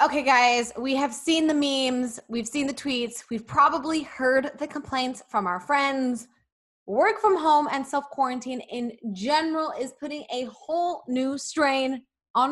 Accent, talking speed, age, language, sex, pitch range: American, 160 wpm, 20-39, English, female, 220-290 Hz